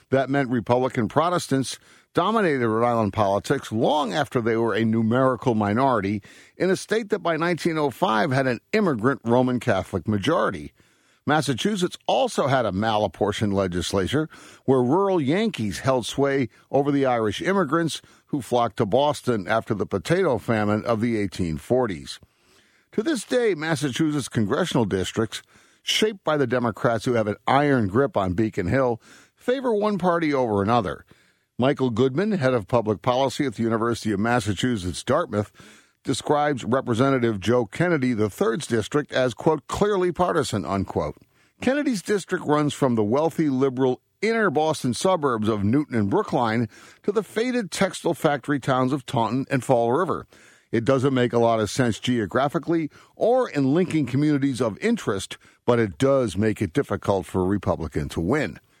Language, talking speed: English, 150 wpm